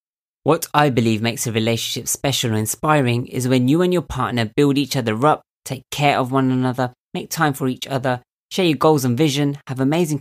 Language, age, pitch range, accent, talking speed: English, 20-39, 115-145 Hz, British, 210 wpm